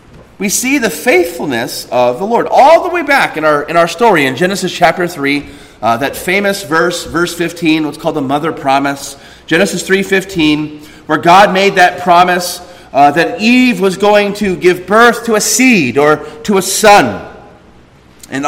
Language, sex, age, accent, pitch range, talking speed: English, male, 30-49, American, 155-210 Hz, 180 wpm